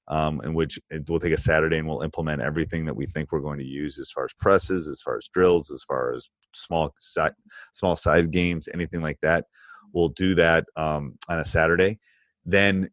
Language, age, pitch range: English, 30-49, 80-100 Hz